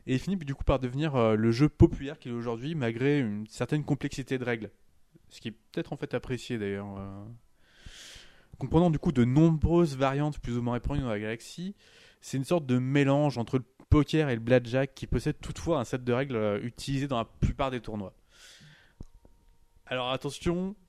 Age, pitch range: 20-39, 110-155 Hz